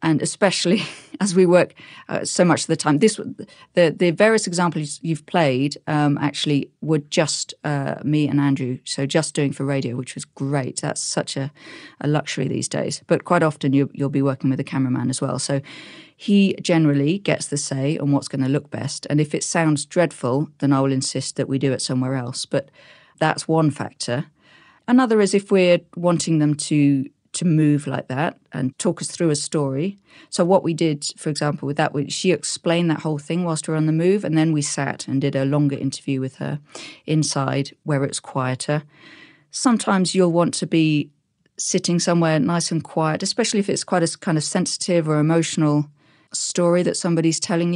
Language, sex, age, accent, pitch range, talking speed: English, female, 40-59, British, 140-175 Hz, 200 wpm